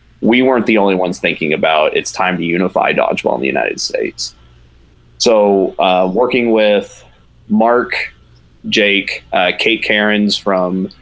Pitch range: 90-105 Hz